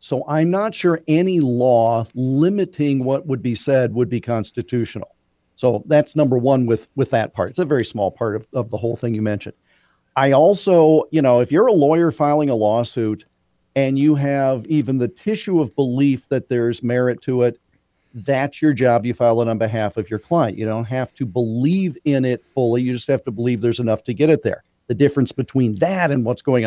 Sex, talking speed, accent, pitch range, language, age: male, 215 wpm, American, 120-160 Hz, English, 50-69